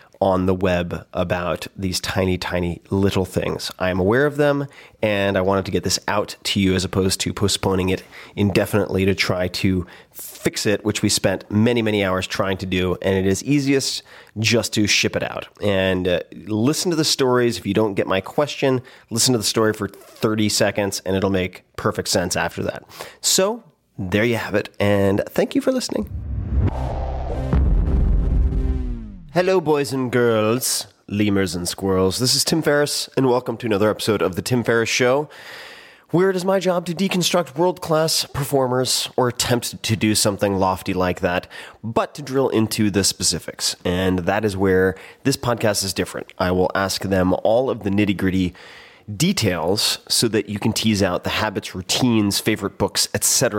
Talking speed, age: 180 wpm, 30-49